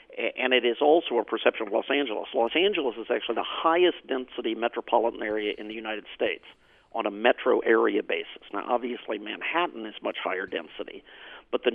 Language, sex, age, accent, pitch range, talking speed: English, male, 50-69, American, 115-160 Hz, 175 wpm